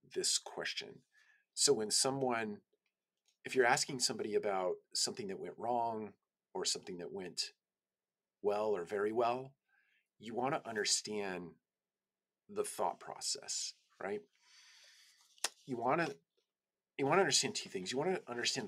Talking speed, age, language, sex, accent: 140 wpm, 40-59, English, male, American